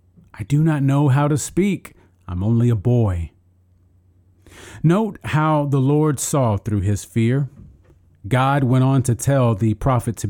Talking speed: 155 wpm